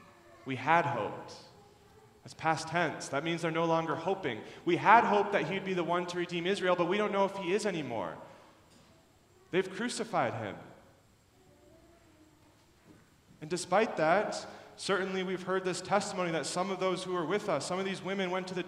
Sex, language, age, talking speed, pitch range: male, English, 30-49, 185 wpm, 150-185 Hz